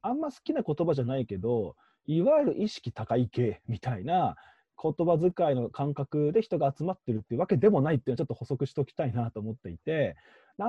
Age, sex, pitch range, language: 20-39, male, 125-205 Hz, Japanese